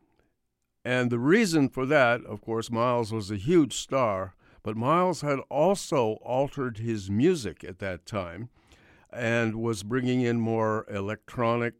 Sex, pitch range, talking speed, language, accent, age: male, 100-130 Hz, 140 wpm, English, American, 60-79